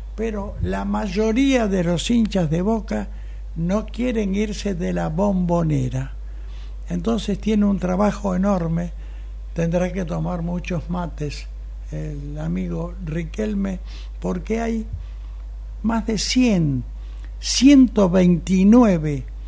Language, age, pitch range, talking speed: Spanish, 60-79, 165-205 Hz, 100 wpm